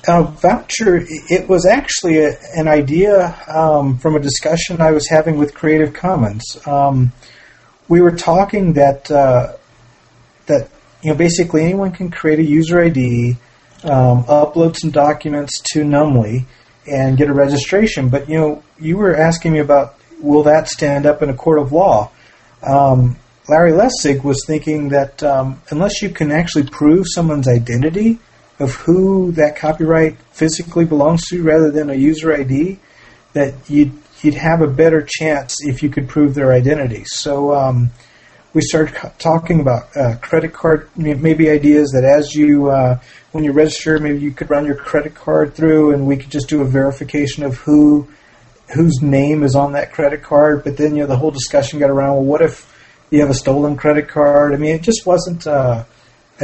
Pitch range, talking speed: 140-160 Hz, 180 wpm